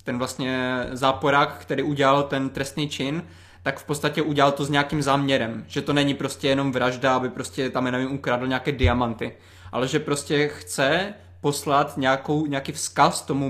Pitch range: 130-150 Hz